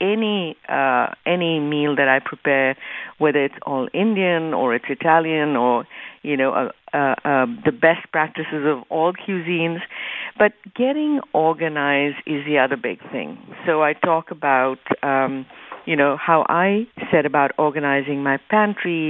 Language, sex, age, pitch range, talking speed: English, female, 60-79, 140-180 Hz, 150 wpm